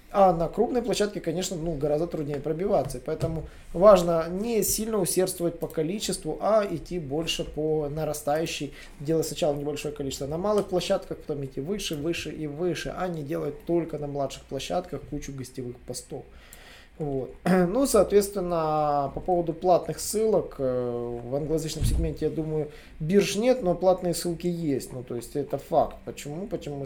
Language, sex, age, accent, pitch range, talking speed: Russian, male, 20-39, native, 145-185 Hz, 155 wpm